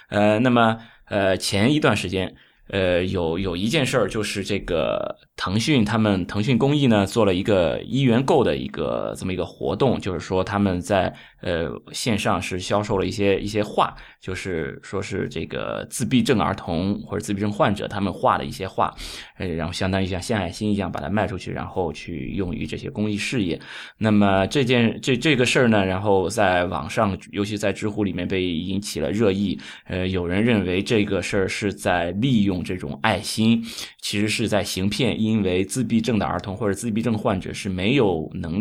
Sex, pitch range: male, 95-115 Hz